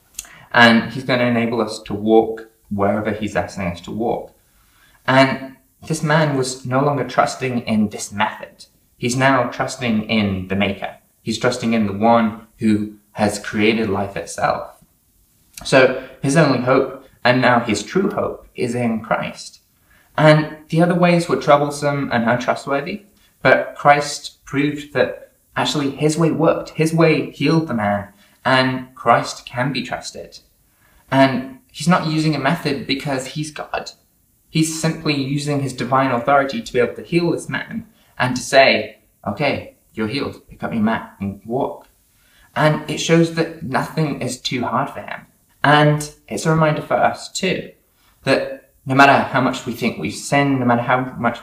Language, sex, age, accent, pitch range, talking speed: English, male, 20-39, British, 110-145 Hz, 165 wpm